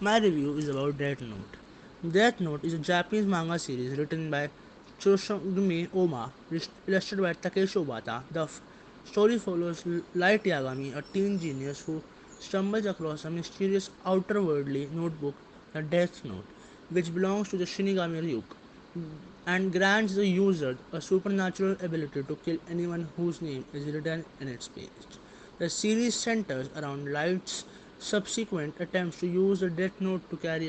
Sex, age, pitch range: male, 20-39, 150-185 Hz